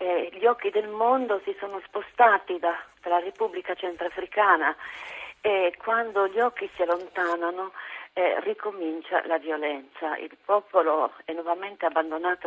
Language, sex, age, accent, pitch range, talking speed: Italian, female, 40-59, native, 160-200 Hz, 135 wpm